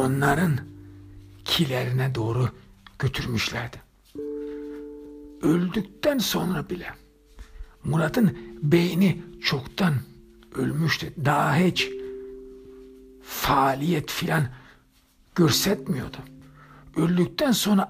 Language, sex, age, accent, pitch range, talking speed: Turkish, male, 60-79, native, 100-165 Hz, 60 wpm